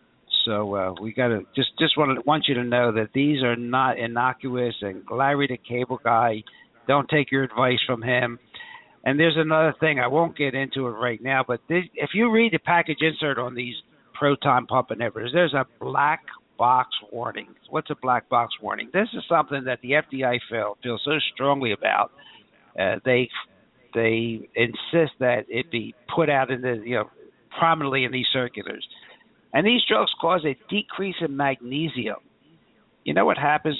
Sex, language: male, English